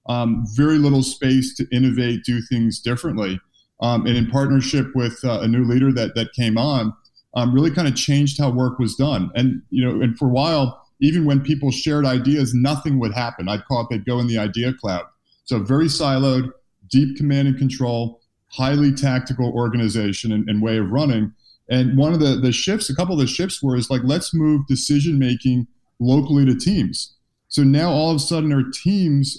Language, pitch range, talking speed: Turkish, 125-145 Hz, 200 wpm